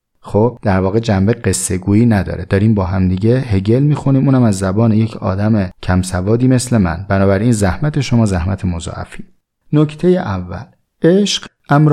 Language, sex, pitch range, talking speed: Persian, male, 95-125 Hz, 150 wpm